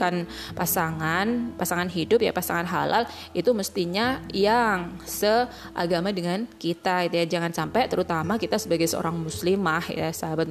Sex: female